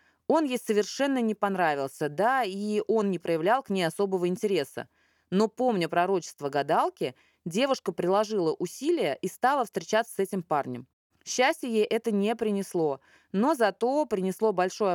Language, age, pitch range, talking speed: Russian, 20-39, 165-215 Hz, 145 wpm